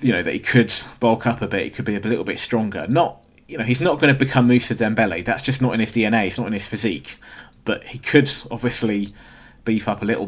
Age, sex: 20-39, male